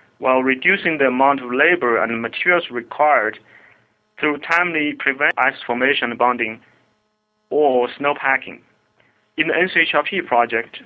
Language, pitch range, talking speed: English, 125-155 Hz, 115 wpm